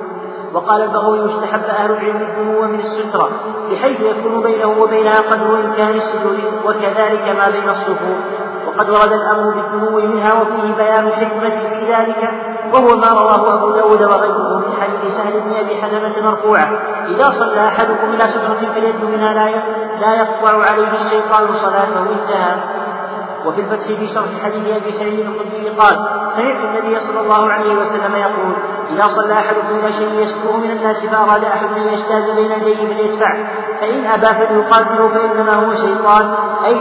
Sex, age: male, 40-59